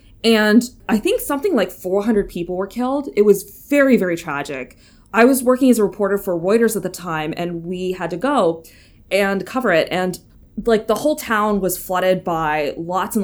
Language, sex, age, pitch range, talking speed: English, female, 20-39, 175-215 Hz, 195 wpm